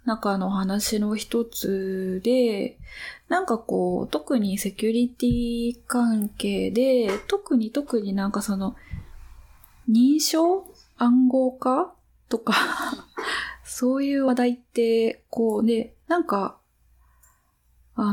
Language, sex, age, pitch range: Japanese, female, 20-39, 195-255 Hz